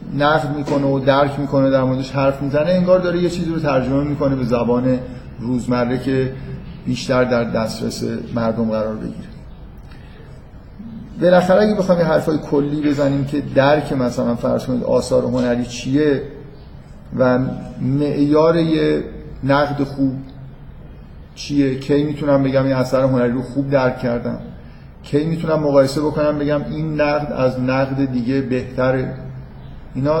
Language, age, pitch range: Persian, 50-69, 125-150 Hz